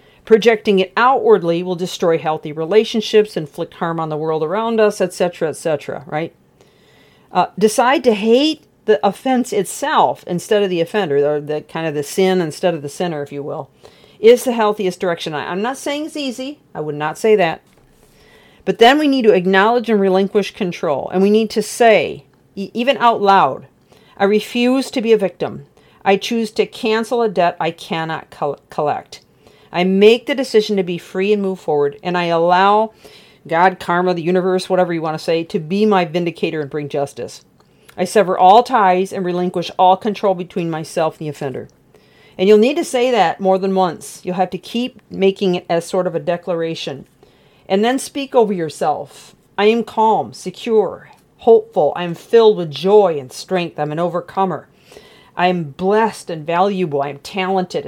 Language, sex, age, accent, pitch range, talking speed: English, female, 50-69, American, 170-215 Hz, 185 wpm